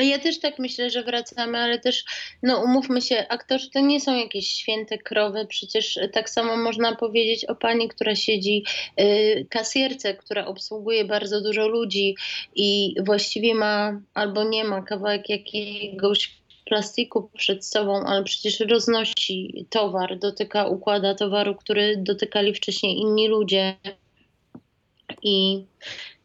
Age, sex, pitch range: 20-39, female, 195-230 Hz